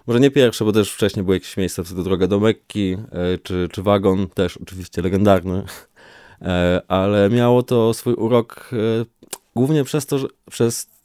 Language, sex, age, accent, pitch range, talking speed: Polish, male, 20-39, native, 95-120 Hz, 165 wpm